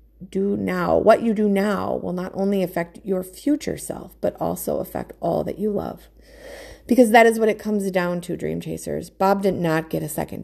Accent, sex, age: American, female, 30-49